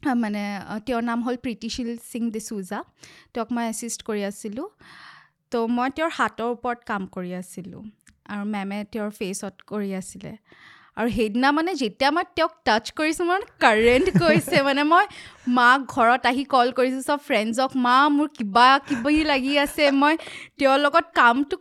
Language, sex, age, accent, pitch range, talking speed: English, female, 20-39, Indian, 230-305 Hz, 125 wpm